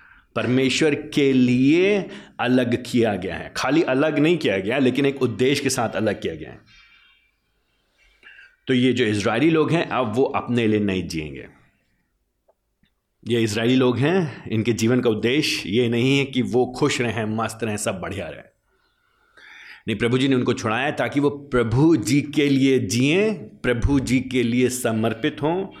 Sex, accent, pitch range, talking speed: male, native, 105-135 Hz, 165 wpm